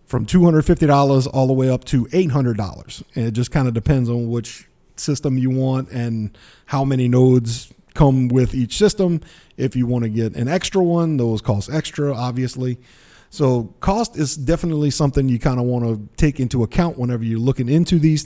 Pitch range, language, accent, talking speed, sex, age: 120-150 Hz, English, American, 185 wpm, male, 40-59